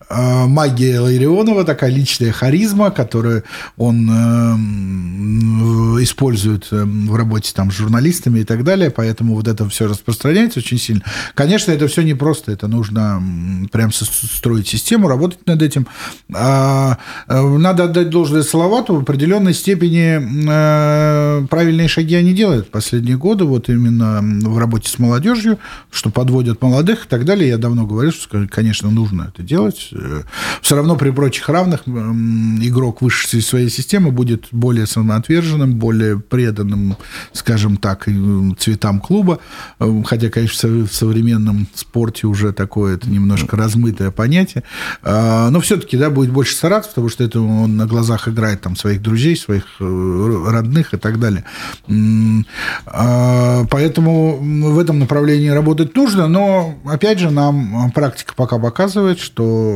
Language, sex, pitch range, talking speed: Russian, male, 110-150 Hz, 130 wpm